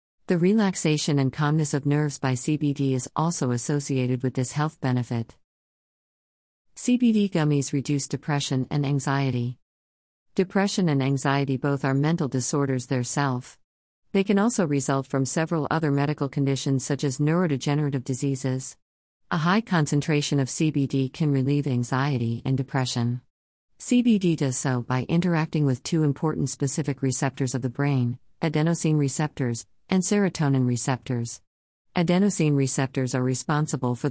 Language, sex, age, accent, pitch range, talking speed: English, female, 50-69, American, 130-150 Hz, 130 wpm